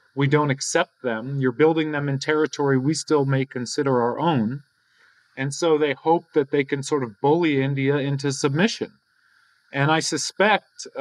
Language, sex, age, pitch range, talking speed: English, male, 30-49, 135-165 Hz, 170 wpm